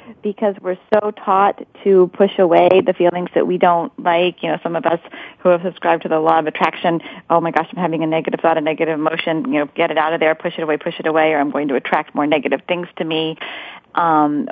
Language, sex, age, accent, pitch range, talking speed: English, female, 30-49, American, 155-185 Hz, 250 wpm